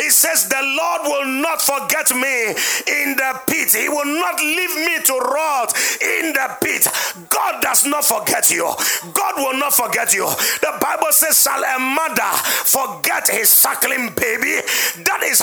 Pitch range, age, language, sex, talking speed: 250-315 Hz, 40-59, English, male, 165 wpm